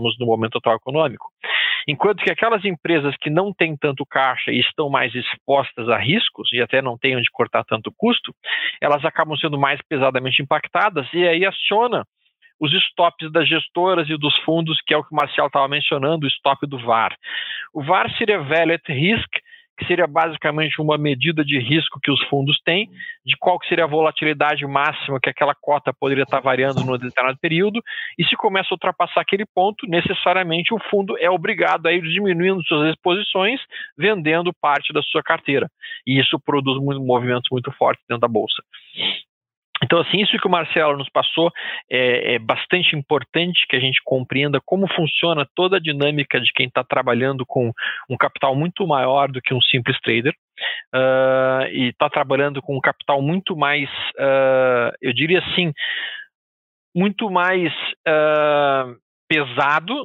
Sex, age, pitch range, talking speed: male, 40-59, 135-175 Hz, 170 wpm